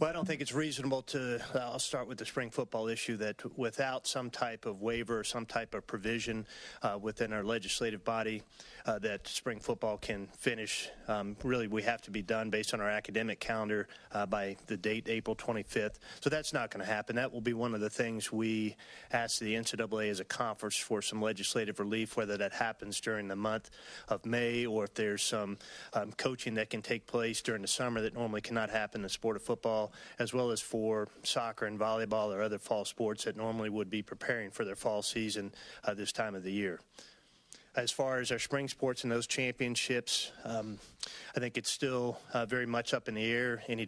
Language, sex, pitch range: English, male, 110-125 Hz